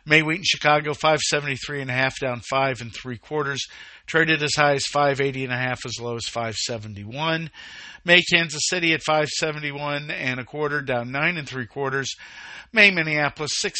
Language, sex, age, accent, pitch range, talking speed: English, male, 50-69, American, 125-155 Hz, 195 wpm